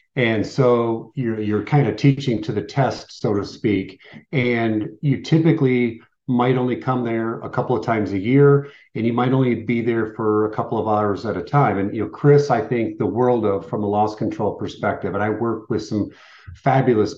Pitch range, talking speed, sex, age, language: 110-125 Hz, 210 wpm, male, 40-59, English